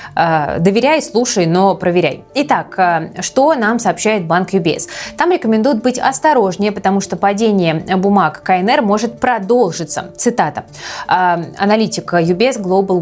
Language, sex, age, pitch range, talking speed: Russian, female, 20-39, 180-235 Hz, 115 wpm